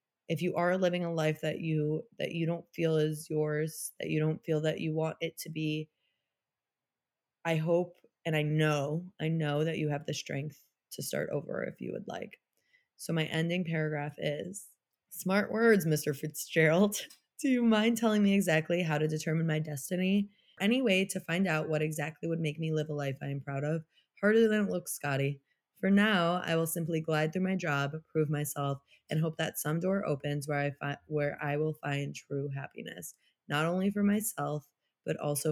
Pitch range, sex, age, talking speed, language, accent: 155-195 Hz, female, 20-39, 200 wpm, English, American